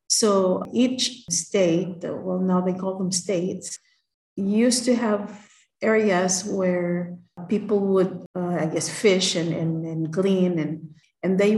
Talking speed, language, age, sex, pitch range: 140 wpm, English, 50-69, female, 175-195 Hz